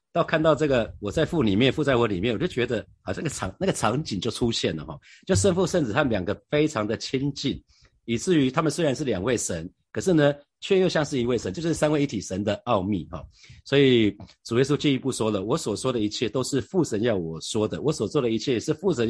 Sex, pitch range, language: male, 105-145 Hz, Chinese